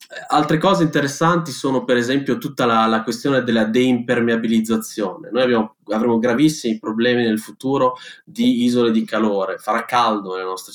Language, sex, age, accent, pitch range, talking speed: Italian, male, 20-39, native, 105-120 Hz, 150 wpm